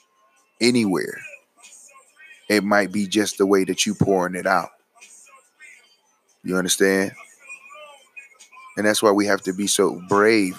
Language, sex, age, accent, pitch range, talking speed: English, male, 30-49, American, 100-115 Hz, 130 wpm